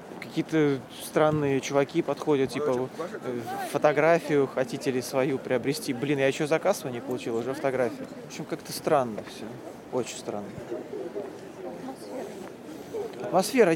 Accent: native